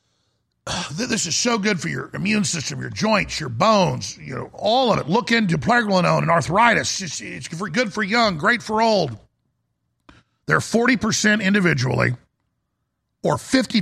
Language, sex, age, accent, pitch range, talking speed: English, male, 50-69, American, 155-205 Hz, 150 wpm